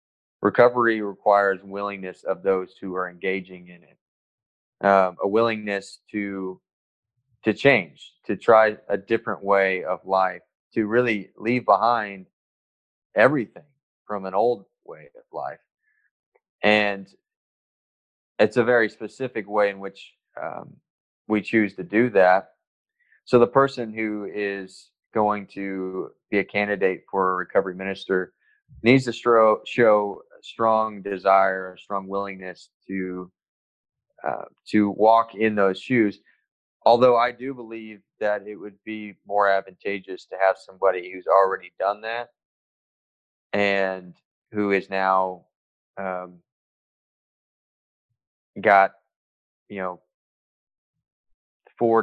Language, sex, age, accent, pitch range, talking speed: English, male, 20-39, American, 95-110 Hz, 120 wpm